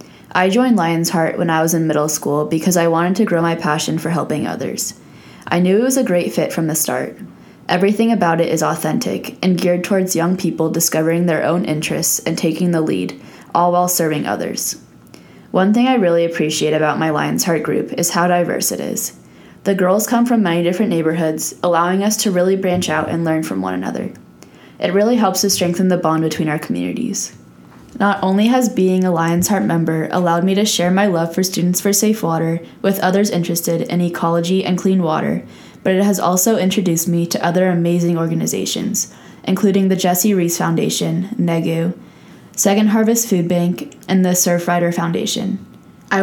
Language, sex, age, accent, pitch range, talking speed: English, female, 10-29, American, 165-190 Hz, 190 wpm